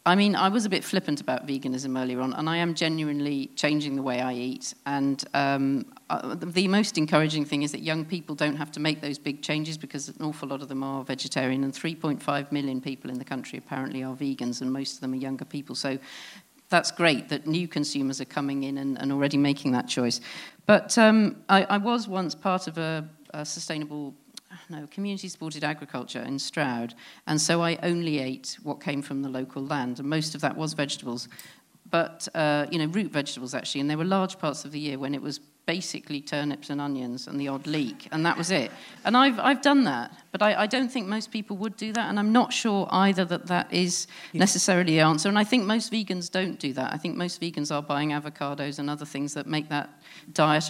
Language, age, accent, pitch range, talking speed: English, 40-59, British, 140-180 Hz, 225 wpm